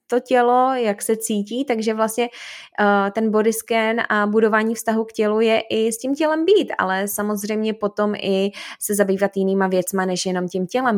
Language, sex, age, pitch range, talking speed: Czech, female, 20-39, 195-230 Hz, 185 wpm